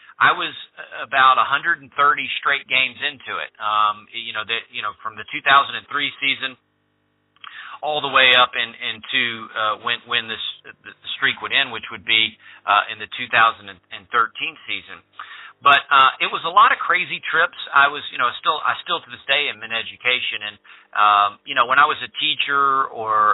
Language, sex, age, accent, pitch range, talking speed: English, male, 40-59, American, 110-140 Hz, 185 wpm